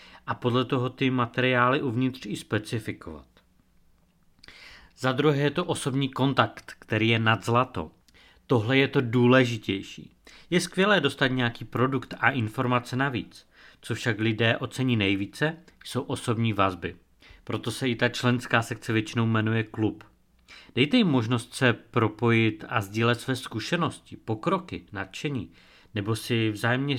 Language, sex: Czech, male